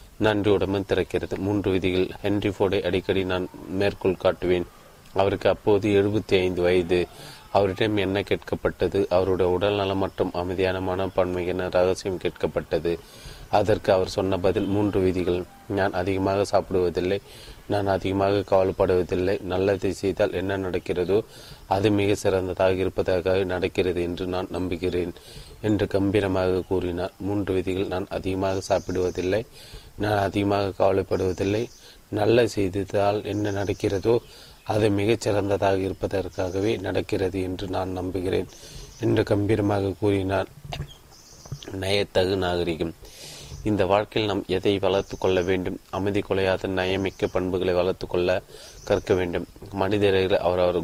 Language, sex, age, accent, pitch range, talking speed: Tamil, male, 30-49, native, 90-100 Hz, 105 wpm